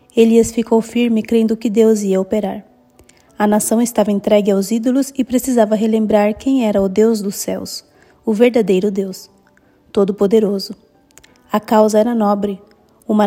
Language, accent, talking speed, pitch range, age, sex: Portuguese, Brazilian, 145 wpm, 205-235 Hz, 20-39, female